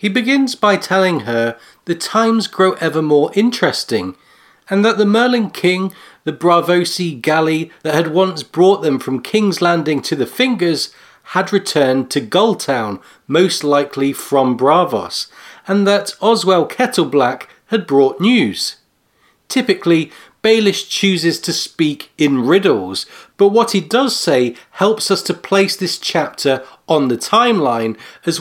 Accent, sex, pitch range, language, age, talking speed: British, male, 150-205 Hz, English, 40-59, 145 wpm